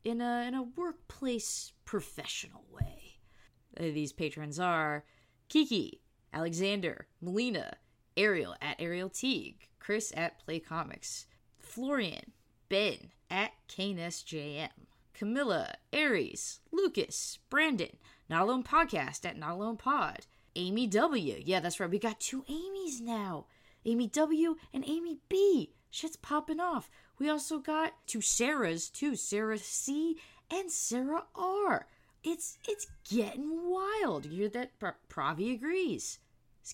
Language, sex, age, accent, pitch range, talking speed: English, female, 20-39, American, 170-280 Hz, 125 wpm